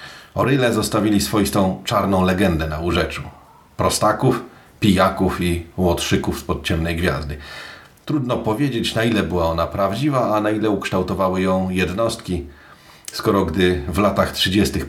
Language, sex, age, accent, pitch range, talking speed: Polish, male, 40-59, native, 85-110 Hz, 130 wpm